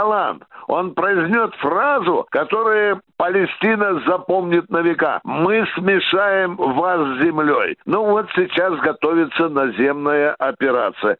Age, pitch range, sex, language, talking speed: 60-79, 175-230 Hz, male, Russian, 100 wpm